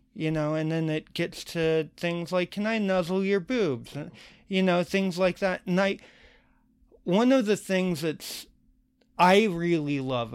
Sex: male